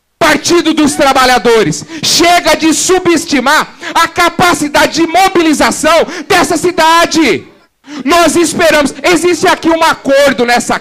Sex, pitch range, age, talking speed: male, 280-340 Hz, 40-59, 105 wpm